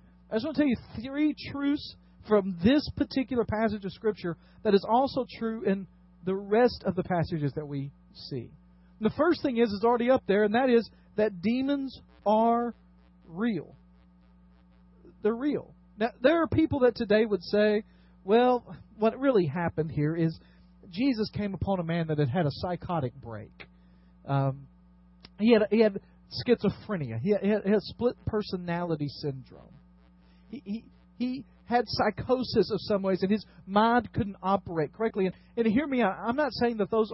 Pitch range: 145-230 Hz